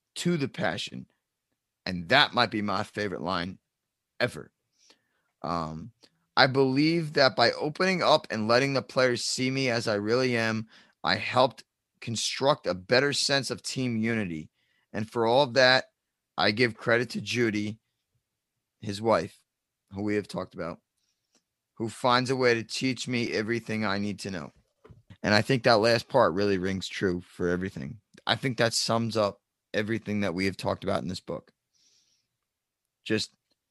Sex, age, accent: male, 20-39, American